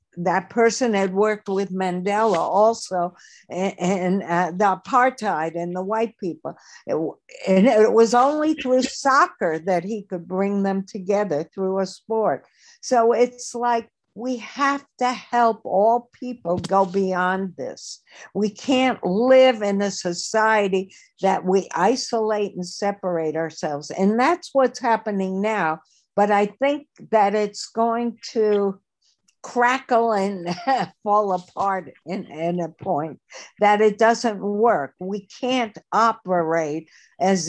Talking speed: 135 wpm